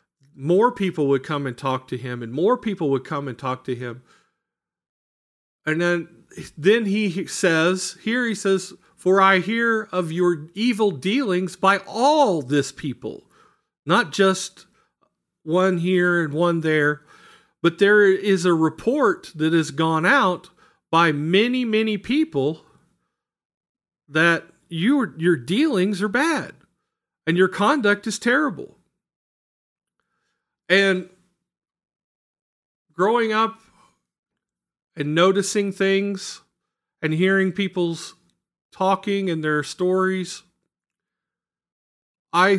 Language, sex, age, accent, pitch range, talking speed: English, male, 40-59, American, 160-200 Hz, 115 wpm